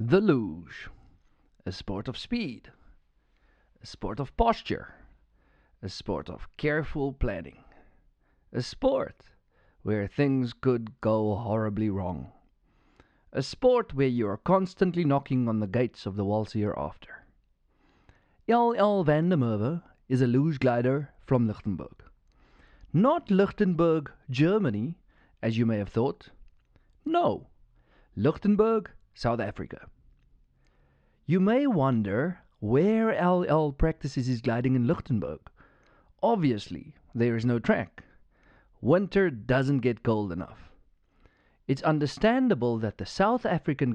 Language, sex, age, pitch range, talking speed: English, male, 40-59, 105-165 Hz, 115 wpm